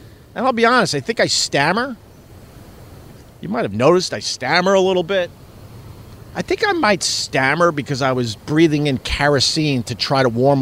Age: 50-69